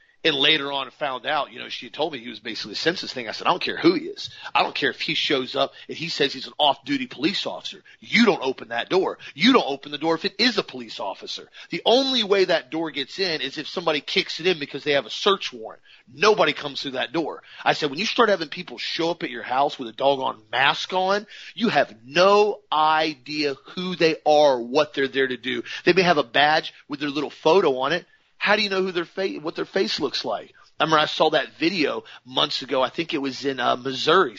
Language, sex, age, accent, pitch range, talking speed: English, male, 40-59, American, 145-195 Hz, 255 wpm